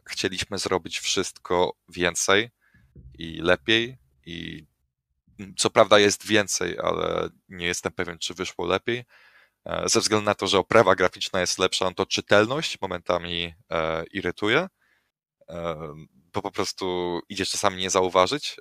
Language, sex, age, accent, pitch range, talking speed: Polish, male, 20-39, native, 85-95 Hz, 130 wpm